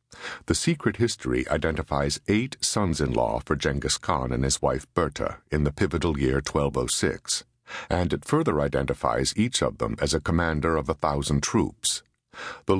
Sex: male